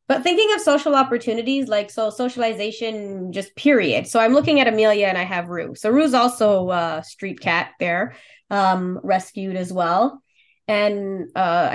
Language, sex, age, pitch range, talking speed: English, female, 20-39, 175-230 Hz, 165 wpm